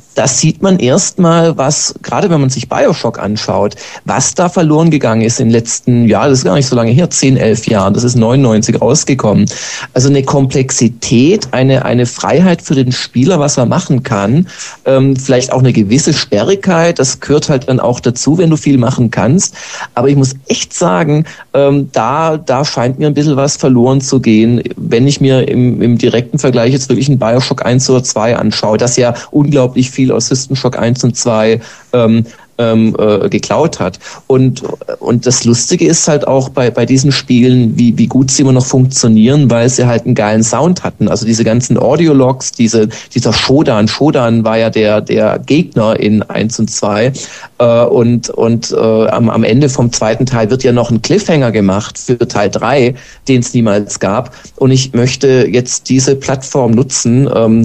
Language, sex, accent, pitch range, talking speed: German, male, German, 115-140 Hz, 190 wpm